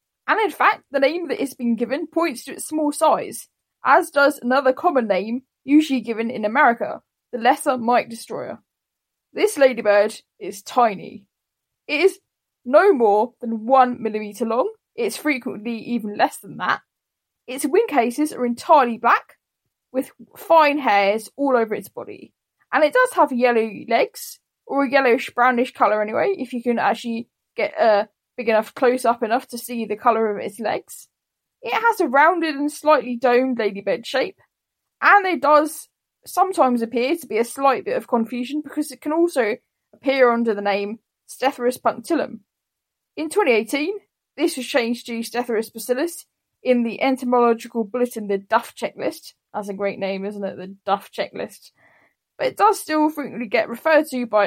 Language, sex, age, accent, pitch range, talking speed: English, female, 10-29, British, 230-300 Hz, 165 wpm